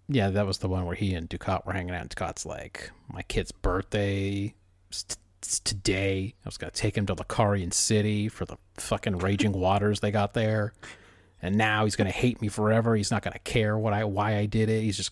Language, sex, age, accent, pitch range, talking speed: English, male, 40-59, American, 90-110 Hz, 240 wpm